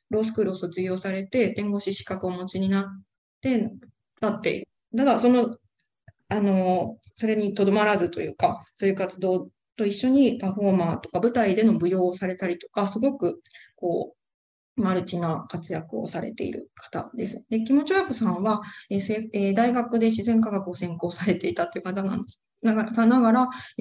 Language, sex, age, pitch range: Japanese, female, 20-39, 180-225 Hz